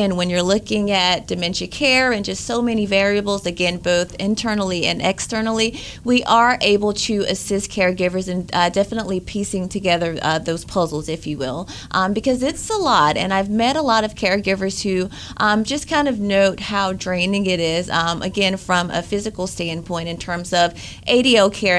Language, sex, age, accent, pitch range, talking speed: English, female, 30-49, American, 175-215 Hz, 185 wpm